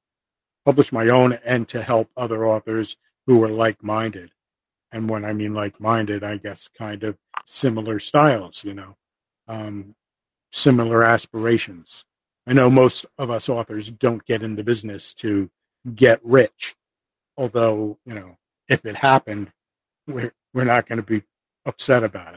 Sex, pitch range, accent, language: male, 110-130 Hz, American, English